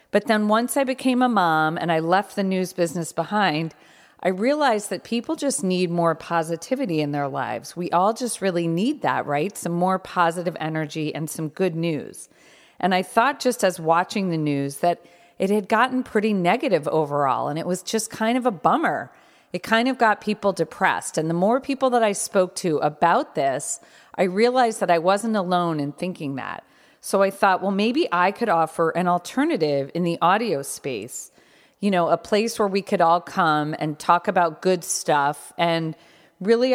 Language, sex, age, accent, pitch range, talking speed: English, female, 40-59, American, 160-215 Hz, 195 wpm